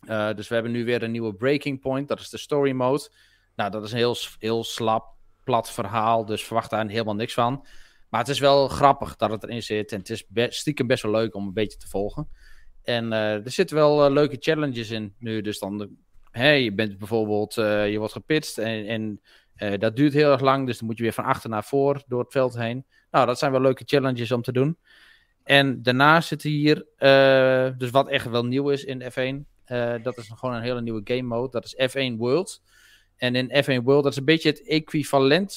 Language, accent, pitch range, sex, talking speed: Dutch, Dutch, 115-140 Hz, male, 235 wpm